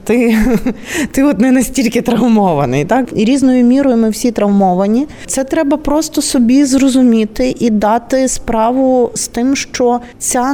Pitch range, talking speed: 195-245 Hz, 135 wpm